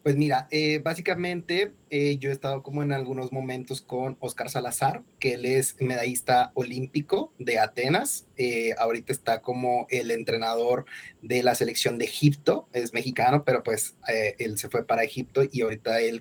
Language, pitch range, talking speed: English, 120-140 Hz, 170 wpm